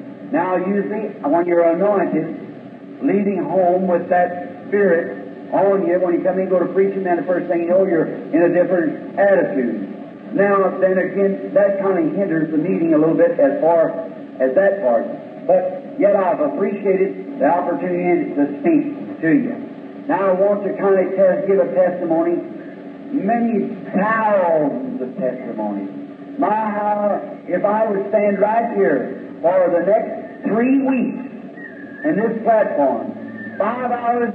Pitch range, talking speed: 190-285 Hz, 155 wpm